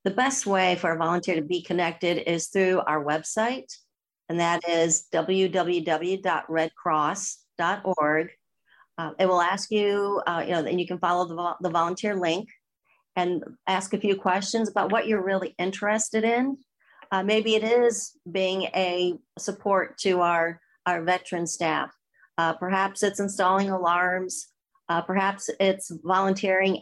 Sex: female